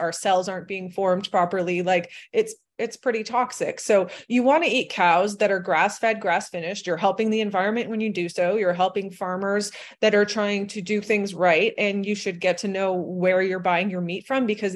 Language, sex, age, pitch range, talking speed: English, female, 20-39, 180-215 Hz, 220 wpm